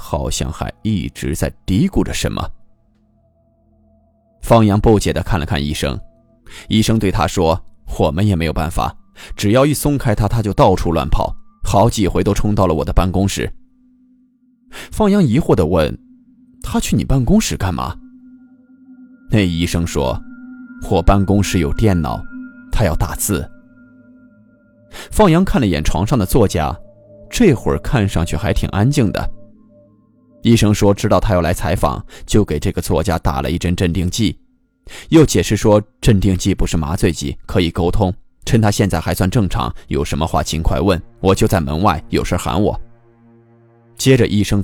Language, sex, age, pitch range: Chinese, male, 20-39, 90-130 Hz